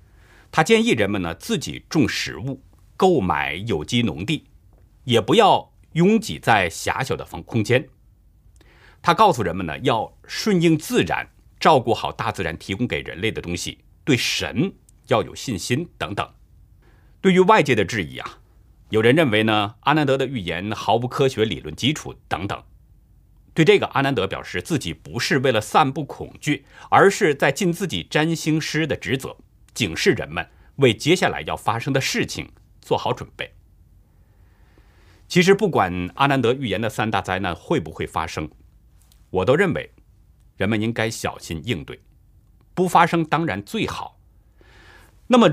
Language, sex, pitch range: Chinese, male, 95-150 Hz